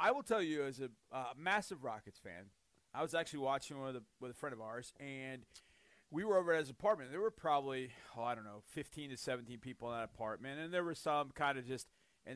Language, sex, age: English, male, 30-49